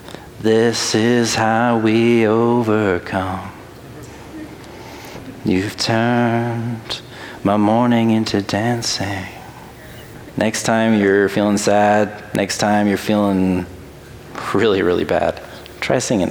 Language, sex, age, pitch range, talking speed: English, male, 30-49, 100-115 Hz, 90 wpm